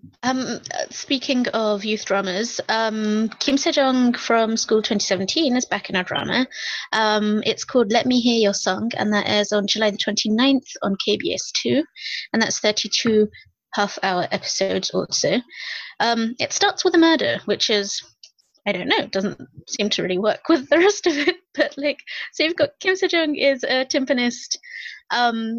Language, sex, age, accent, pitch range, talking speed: English, female, 20-39, British, 205-260 Hz, 170 wpm